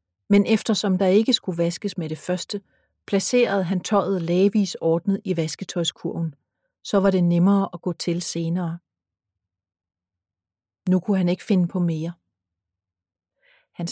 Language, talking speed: Danish, 140 wpm